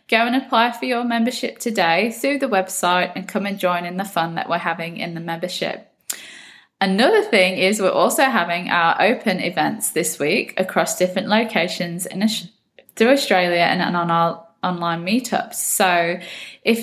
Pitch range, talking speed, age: 175-225 Hz, 165 wpm, 20-39